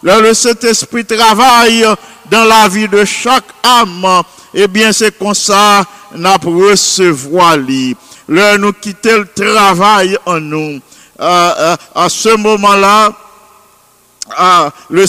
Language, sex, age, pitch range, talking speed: English, male, 50-69, 195-225 Hz, 110 wpm